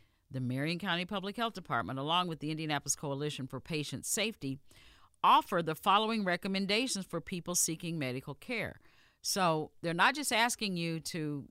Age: 50-69